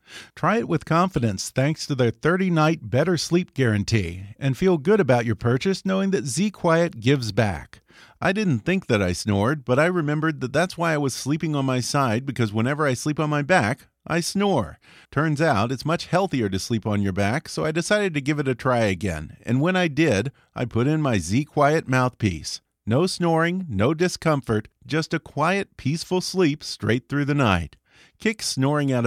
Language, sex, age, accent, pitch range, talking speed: English, male, 40-59, American, 115-165 Hz, 195 wpm